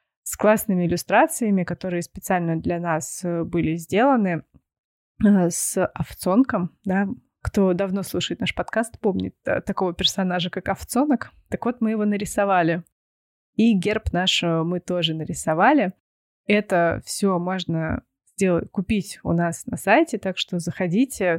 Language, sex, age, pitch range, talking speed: Russian, female, 20-39, 175-210 Hz, 125 wpm